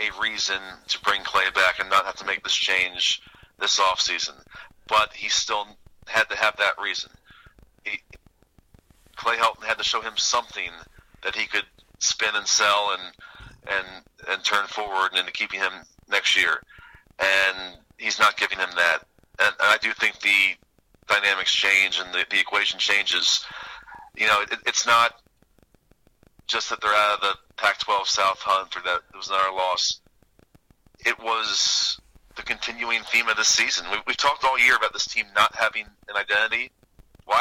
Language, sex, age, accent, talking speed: English, male, 40-59, American, 170 wpm